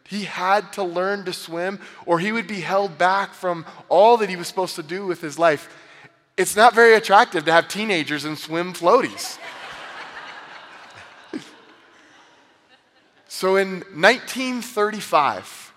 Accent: American